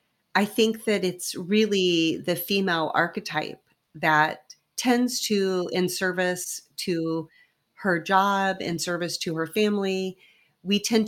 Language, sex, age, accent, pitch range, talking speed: English, female, 30-49, American, 165-220 Hz, 125 wpm